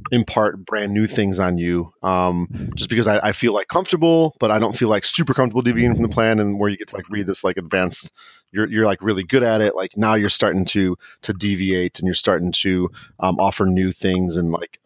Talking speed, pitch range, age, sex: 240 wpm, 90-110 Hz, 30-49, male